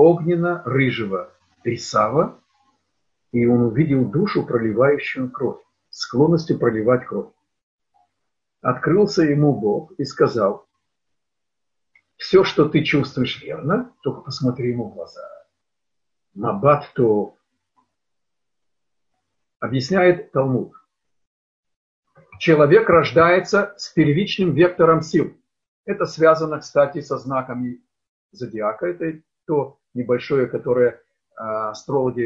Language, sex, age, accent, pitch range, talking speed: Russian, male, 50-69, native, 125-175 Hz, 85 wpm